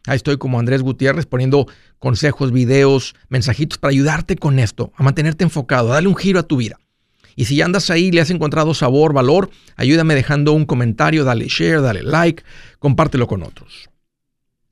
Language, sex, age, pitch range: Spanish, male, 50-69, 135-175 Hz